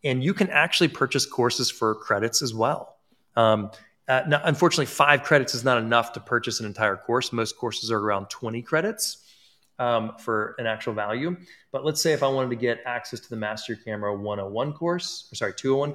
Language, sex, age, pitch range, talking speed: English, male, 30-49, 110-140 Hz, 200 wpm